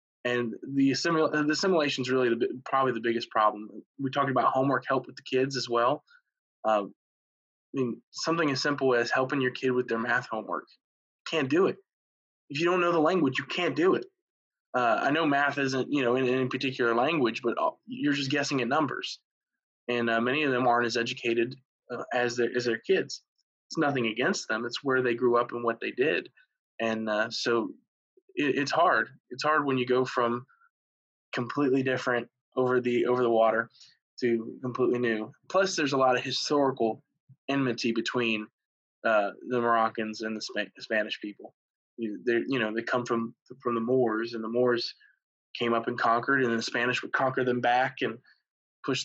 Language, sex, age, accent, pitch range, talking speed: English, male, 20-39, American, 115-140 Hz, 185 wpm